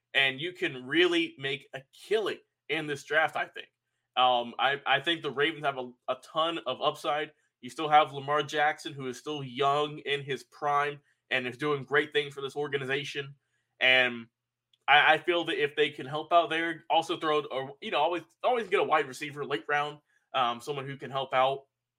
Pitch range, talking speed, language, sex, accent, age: 140-205 Hz, 200 wpm, English, male, American, 20-39